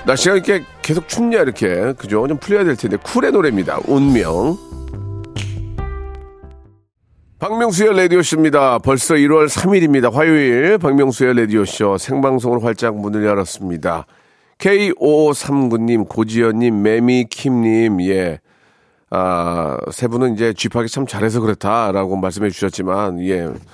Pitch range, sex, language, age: 105-155 Hz, male, Korean, 40-59